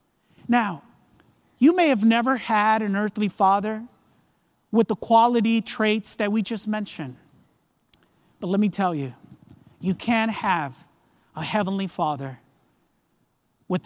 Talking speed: 125 wpm